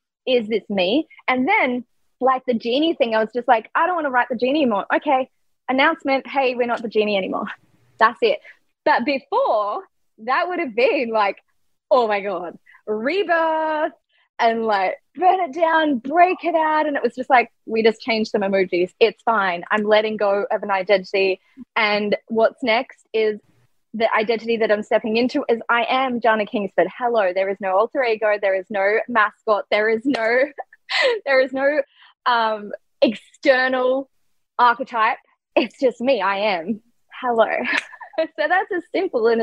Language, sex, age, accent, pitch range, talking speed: English, female, 20-39, Australian, 205-265 Hz, 170 wpm